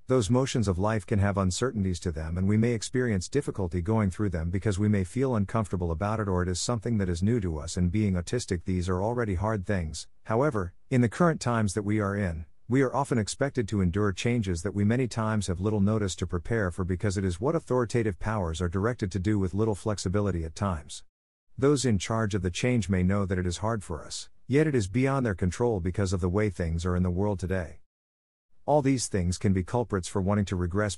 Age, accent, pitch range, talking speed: 50-69, American, 90-115 Hz, 235 wpm